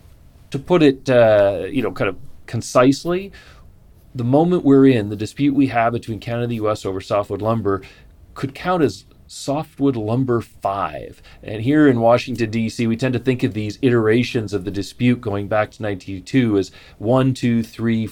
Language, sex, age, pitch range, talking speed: English, male, 40-59, 110-130 Hz, 180 wpm